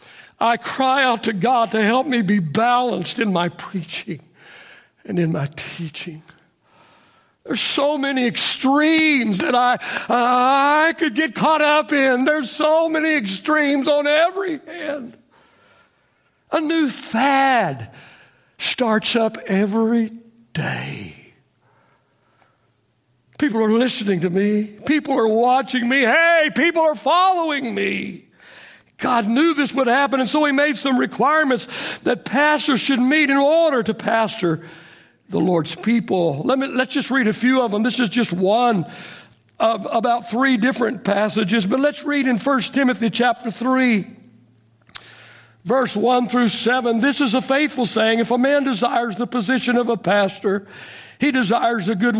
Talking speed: 145 wpm